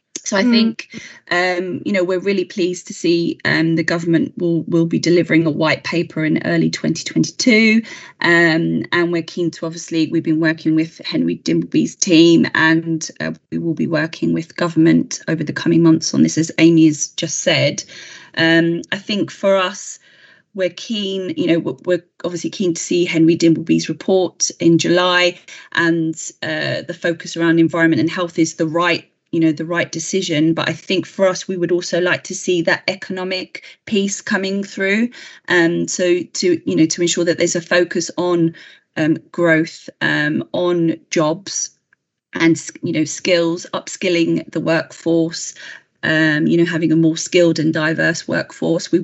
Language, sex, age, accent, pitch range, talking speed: English, female, 20-39, British, 160-180 Hz, 175 wpm